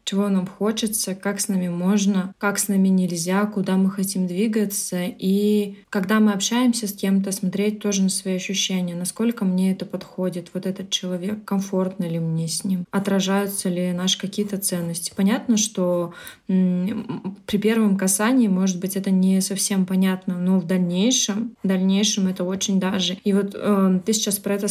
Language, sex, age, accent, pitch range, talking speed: Russian, female, 20-39, native, 190-210 Hz, 165 wpm